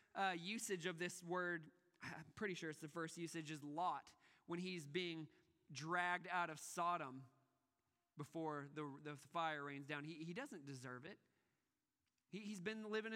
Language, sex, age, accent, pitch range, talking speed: English, male, 20-39, American, 160-205 Hz, 165 wpm